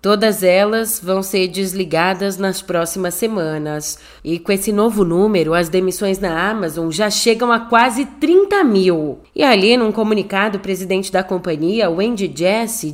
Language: Portuguese